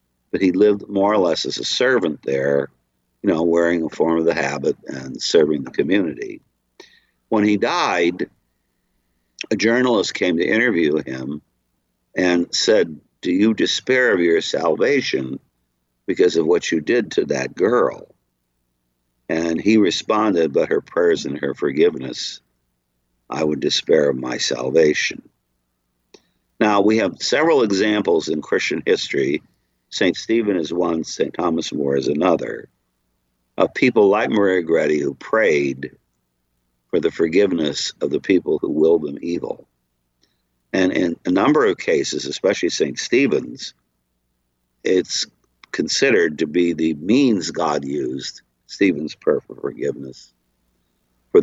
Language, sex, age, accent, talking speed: English, male, 60-79, American, 135 wpm